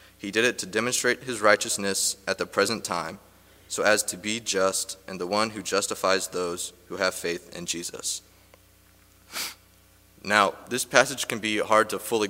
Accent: American